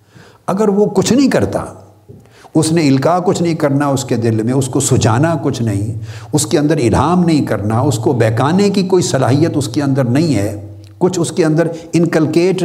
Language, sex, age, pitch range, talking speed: Urdu, male, 60-79, 115-165 Hz, 200 wpm